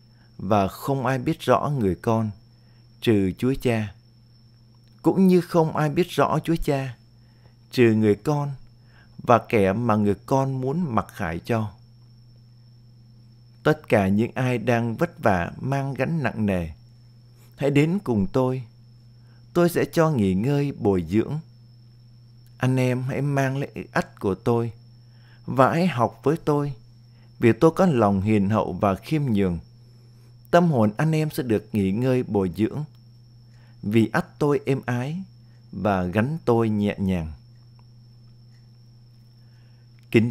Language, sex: Vietnamese, male